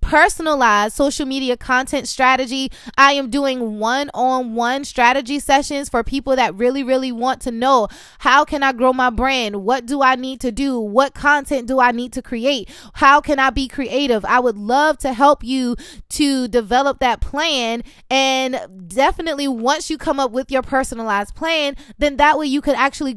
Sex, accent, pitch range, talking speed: female, American, 245-290 Hz, 180 wpm